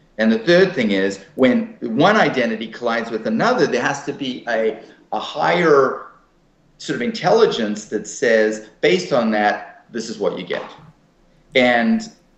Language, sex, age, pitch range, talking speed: English, male, 30-49, 100-165 Hz, 155 wpm